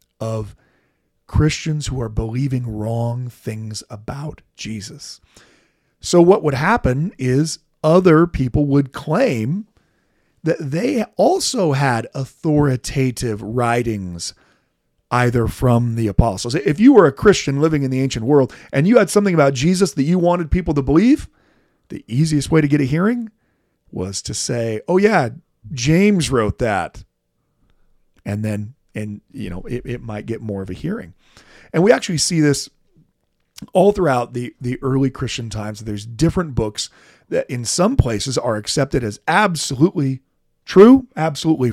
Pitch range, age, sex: 115-165 Hz, 40-59, male